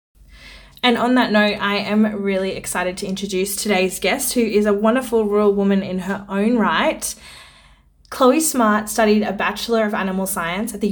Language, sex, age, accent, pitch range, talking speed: English, female, 20-39, Australian, 185-215 Hz, 175 wpm